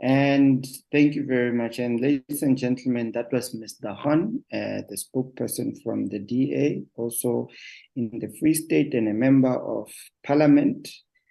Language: English